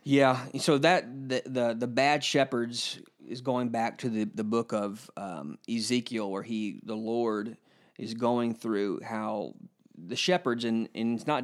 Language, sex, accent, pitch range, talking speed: English, male, American, 110-125 Hz, 170 wpm